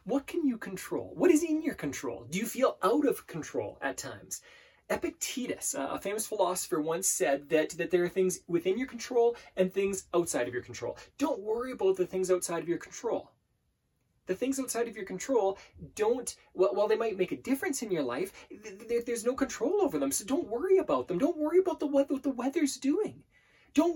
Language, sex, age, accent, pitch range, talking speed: English, male, 20-39, American, 190-295 Hz, 205 wpm